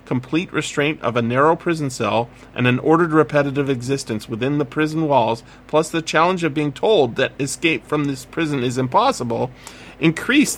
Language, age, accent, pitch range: English, 40-59, American, 120-155 Hz